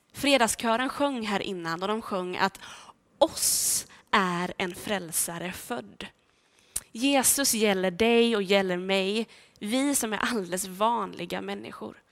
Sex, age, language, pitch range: female, 20-39, Swedish, 195-285 Hz